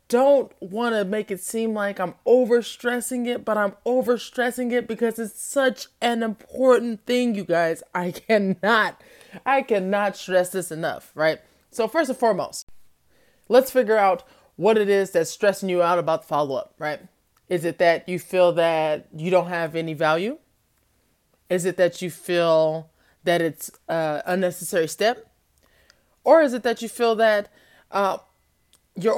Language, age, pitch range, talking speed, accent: English, 20-39, 170-225 Hz, 170 wpm, American